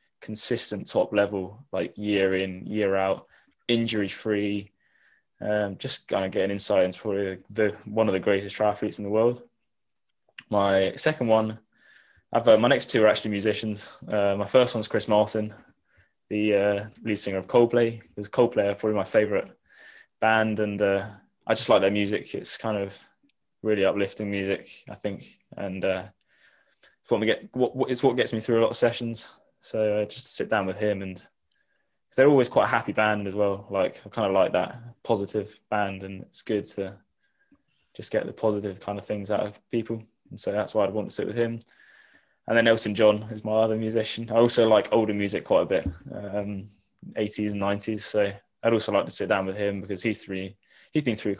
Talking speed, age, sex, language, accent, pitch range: 200 wpm, 10-29, male, English, British, 100-110 Hz